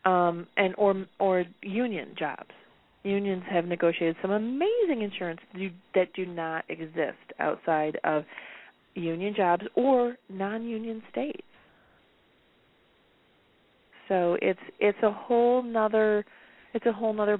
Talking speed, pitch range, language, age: 125 wpm, 175-220 Hz, English, 30-49